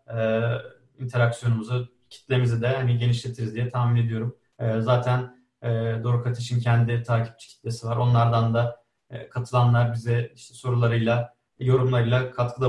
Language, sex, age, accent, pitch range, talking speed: Turkish, male, 30-49, native, 115-130 Hz, 110 wpm